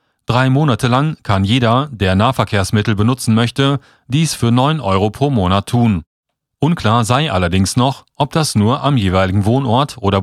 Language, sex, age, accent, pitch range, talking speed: German, male, 40-59, German, 100-135 Hz, 160 wpm